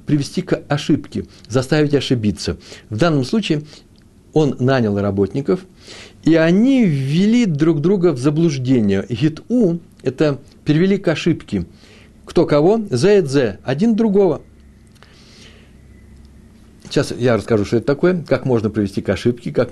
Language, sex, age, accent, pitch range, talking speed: Russian, male, 60-79, native, 110-155 Hz, 120 wpm